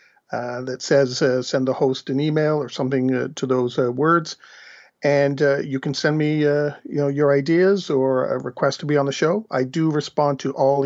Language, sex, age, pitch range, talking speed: English, male, 50-69, 130-150 Hz, 220 wpm